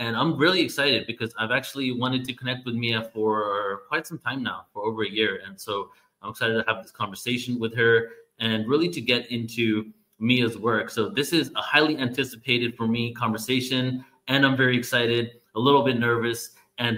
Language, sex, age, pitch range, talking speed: English, male, 30-49, 110-130 Hz, 200 wpm